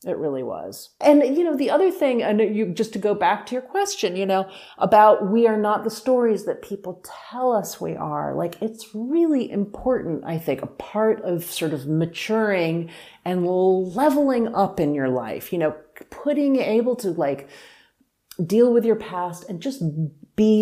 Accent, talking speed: American, 185 wpm